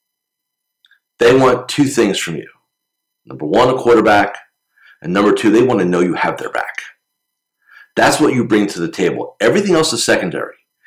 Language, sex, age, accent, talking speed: English, male, 40-59, American, 175 wpm